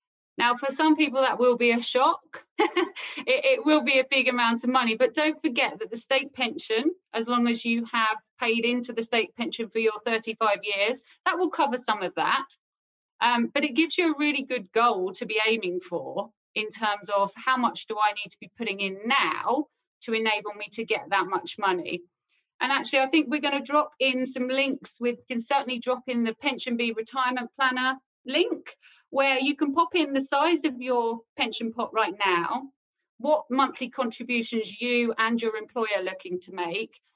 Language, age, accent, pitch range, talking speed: English, 40-59, British, 200-265 Hz, 200 wpm